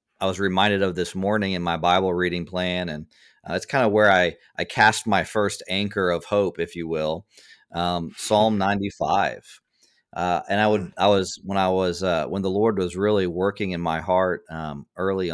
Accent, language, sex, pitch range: American, English, male, 85-100 Hz